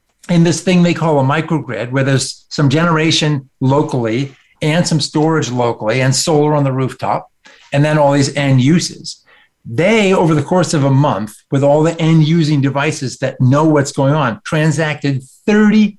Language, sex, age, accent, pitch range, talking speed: English, male, 50-69, American, 130-170 Hz, 175 wpm